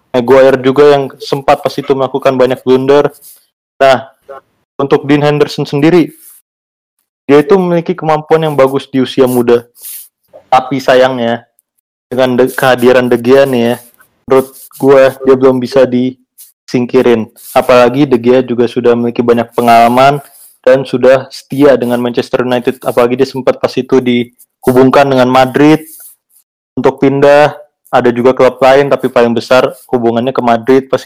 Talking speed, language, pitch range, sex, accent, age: 140 wpm, Indonesian, 120-140 Hz, male, native, 20-39